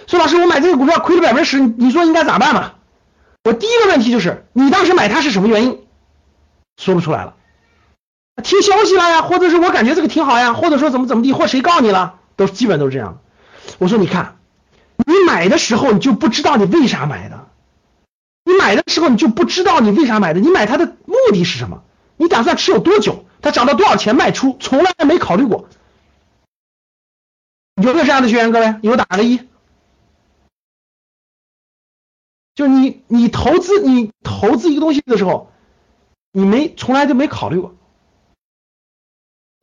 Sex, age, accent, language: male, 50-69, native, Chinese